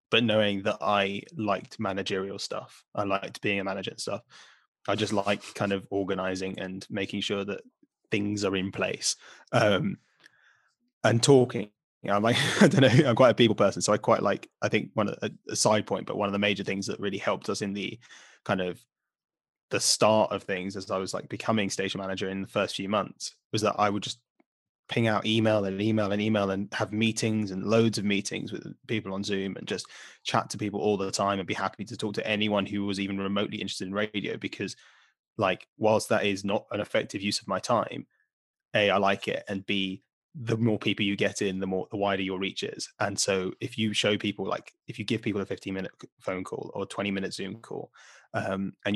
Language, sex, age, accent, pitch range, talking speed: English, male, 20-39, British, 95-110 Hz, 225 wpm